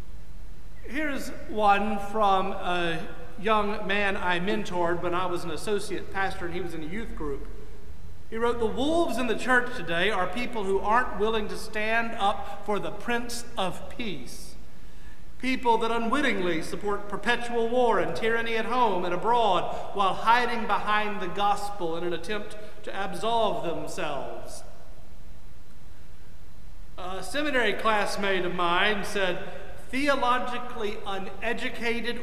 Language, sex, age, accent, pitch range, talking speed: English, male, 40-59, American, 170-230 Hz, 135 wpm